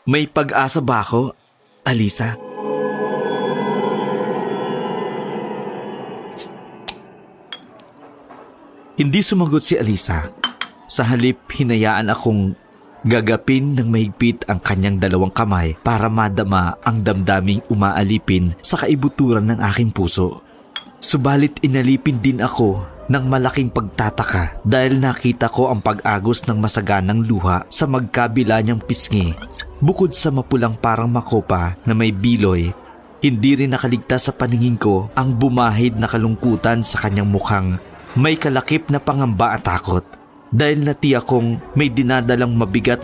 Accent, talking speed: native, 115 wpm